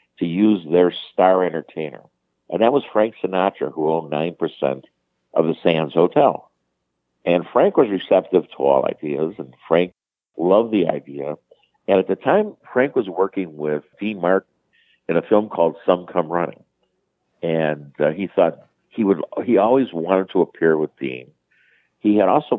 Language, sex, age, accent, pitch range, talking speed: English, male, 60-79, American, 80-105 Hz, 165 wpm